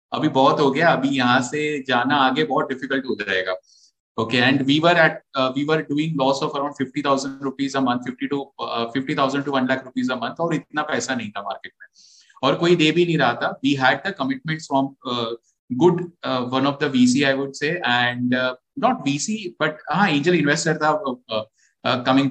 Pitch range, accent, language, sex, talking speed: 130-160 Hz, Indian, English, male, 185 wpm